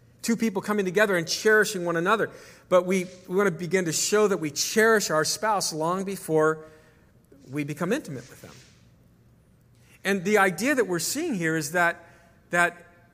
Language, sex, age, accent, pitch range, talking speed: English, male, 50-69, American, 155-195 Hz, 175 wpm